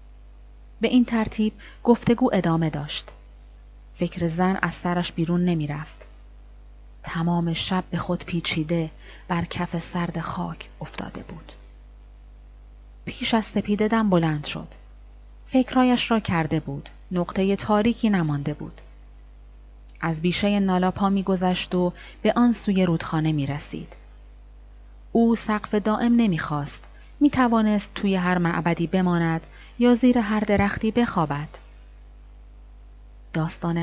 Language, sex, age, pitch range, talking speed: Persian, female, 30-49, 155-195 Hz, 115 wpm